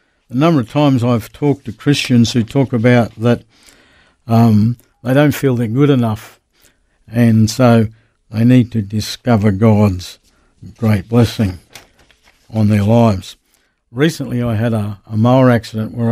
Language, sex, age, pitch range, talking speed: English, male, 60-79, 110-125 Hz, 145 wpm